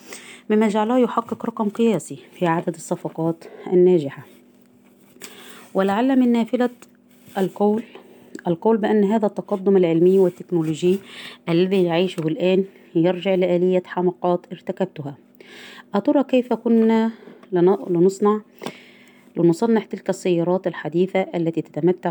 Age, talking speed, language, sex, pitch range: 20-39, 95 wpm, Arabic, female, 170-210 Hz